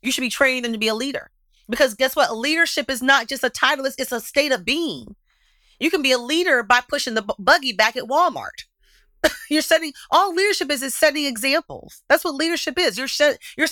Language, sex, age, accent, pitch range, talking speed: English, female, 30-49, American, 215-300 Hz, 225 wpm